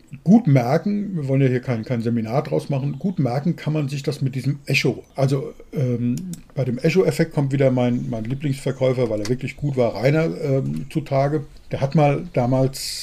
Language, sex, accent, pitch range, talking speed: German, male, German, 125-160 Hz, 195 wpm